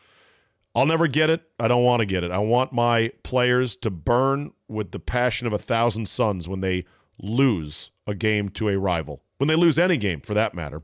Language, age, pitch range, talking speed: English, 40-59, 95-135 Hz, 215 wpm